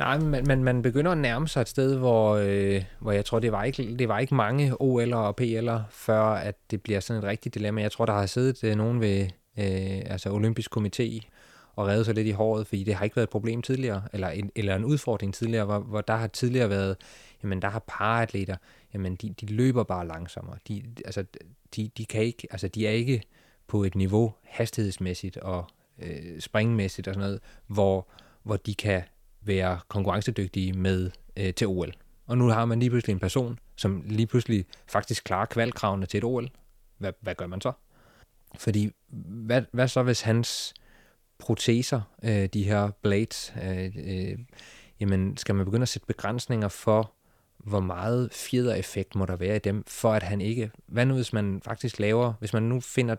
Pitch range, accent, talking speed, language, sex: 100-115 Hz, native, 195 wpm, Danish, male